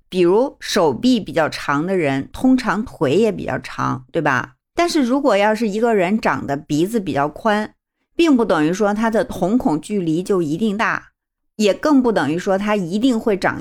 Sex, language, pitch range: female, Chinese, 155-225 Hz